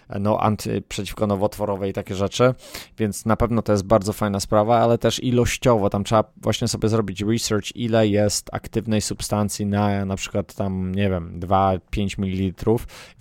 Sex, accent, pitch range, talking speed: male, native, 95-110 Hz, 165 wpm